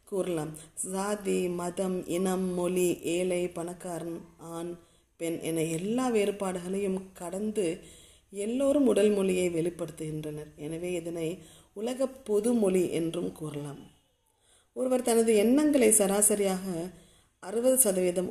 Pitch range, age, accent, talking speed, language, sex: 165-200 Hz, 30-49, native, 95 wpm, Tamil, female